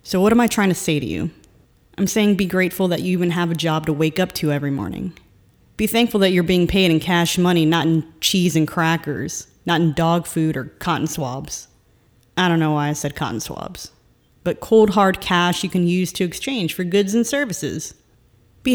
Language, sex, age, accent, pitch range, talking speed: English, female, 30-49, American, 155-190 Hz, 220 wpm